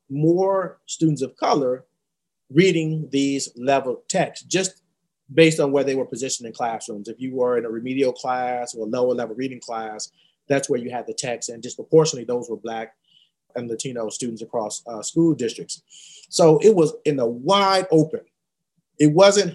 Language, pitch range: English, 135-175 Hz